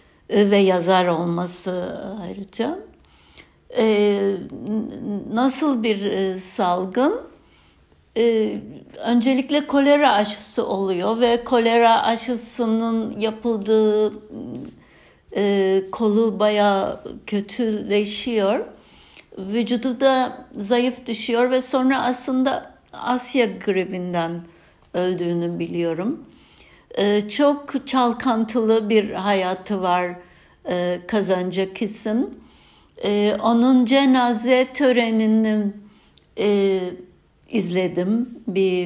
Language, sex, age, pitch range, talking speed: Turkish, female, 60-79, 190-240 Hz, 70 wpm